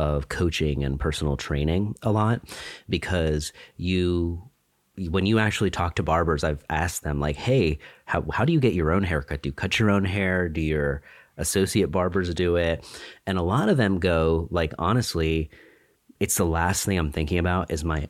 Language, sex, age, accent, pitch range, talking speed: English, male, 30-49, American, 75-95 Hz, 190 wpm